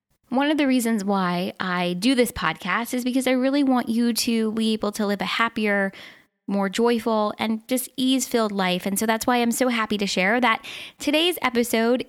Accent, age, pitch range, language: American, 10-29, 210-255 Hz, English